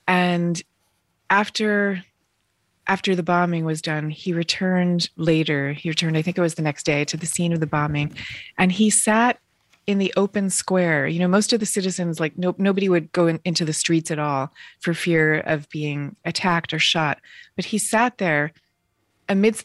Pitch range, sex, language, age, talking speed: 155-195 Hz, female, English, 30-49, 185 wpm